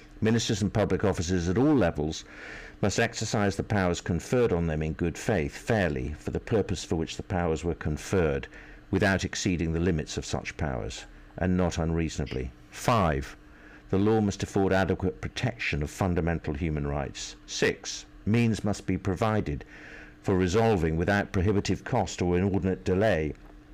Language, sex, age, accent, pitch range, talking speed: English, male, 60-79, British, 80-100 Hz, 155 wpm